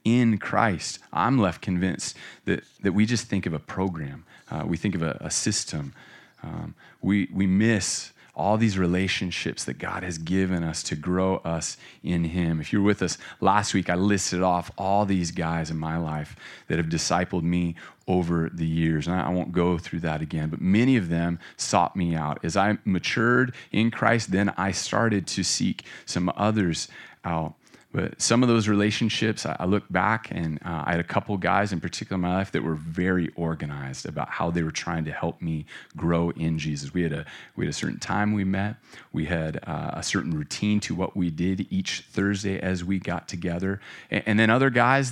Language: English